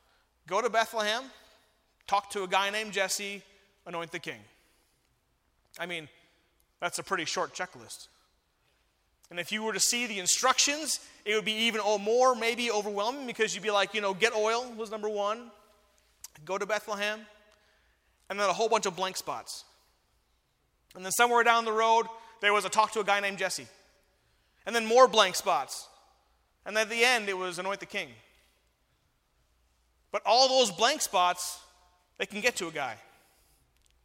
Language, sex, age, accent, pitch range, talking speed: English, male, 30-49, American, 180-220 Hz, 170 wpm